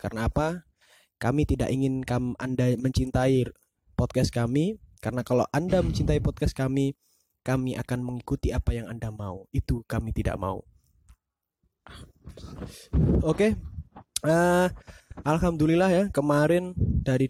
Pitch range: 115-150 Hz